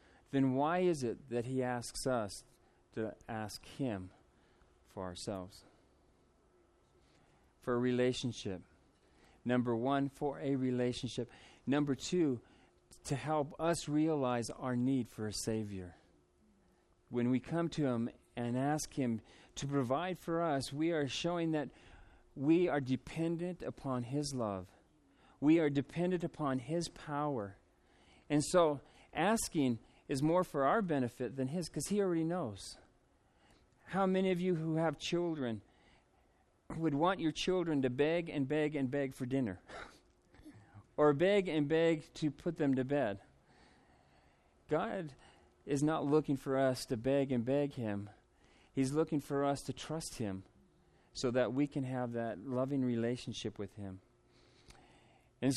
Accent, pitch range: American, 115-155 Hz